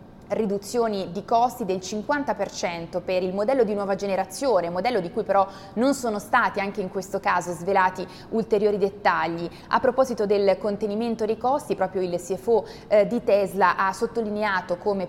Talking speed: 160 wpm